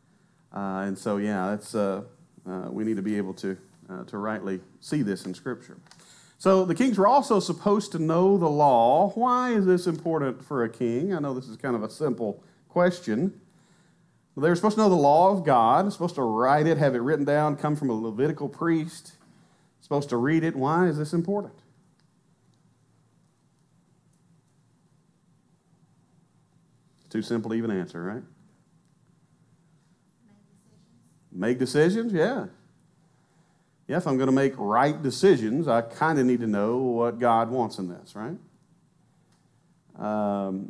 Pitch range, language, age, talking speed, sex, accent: 115-170 Hz, English, 40-59, 160 wpm, male, American